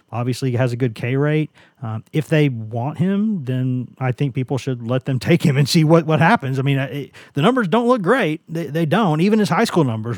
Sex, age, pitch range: male, 40-59, 125-160 Hz